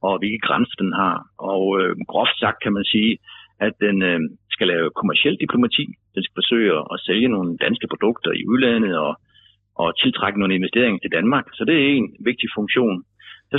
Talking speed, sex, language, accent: 190 wpm, male, Danish, native